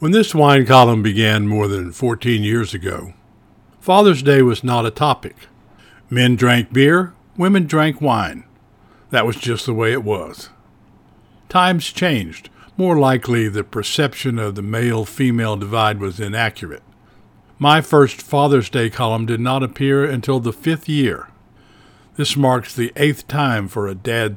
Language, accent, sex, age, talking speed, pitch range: English, American, male, 60-79, 150 wpm, 110-145 Hz